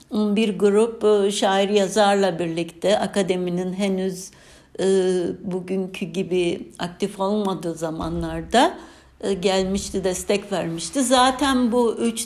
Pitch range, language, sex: 170-215 Hz, Turkish, female